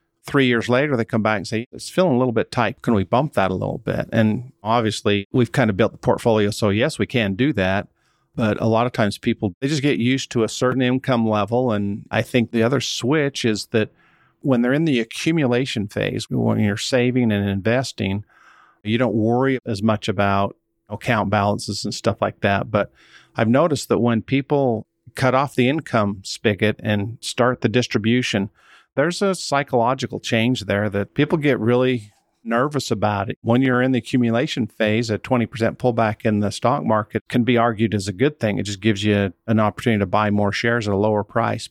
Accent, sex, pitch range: American, male, 105-125 Hz